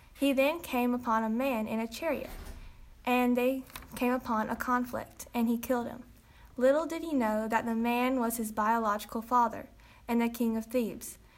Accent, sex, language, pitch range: American, female, English, 225-255 Hz